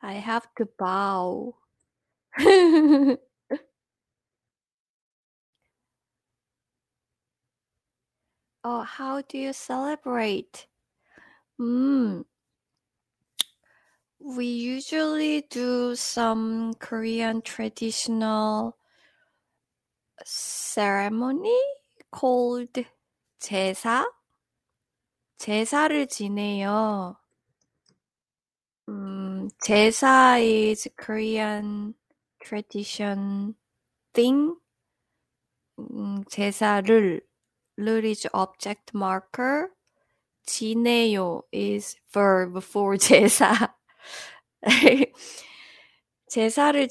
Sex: female